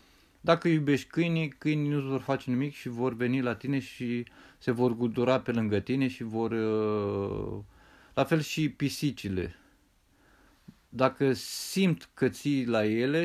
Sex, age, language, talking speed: male, 30-49, Romanian, 145 wpm